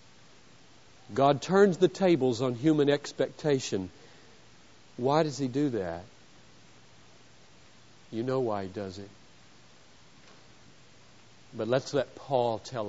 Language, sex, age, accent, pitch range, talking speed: English, male, 50-69, American, 115-165 Hz, 105 wpm